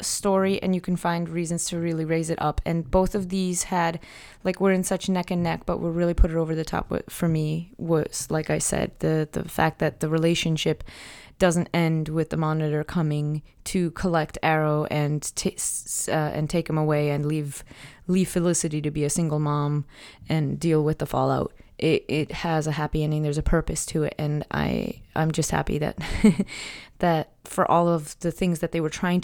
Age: 20-39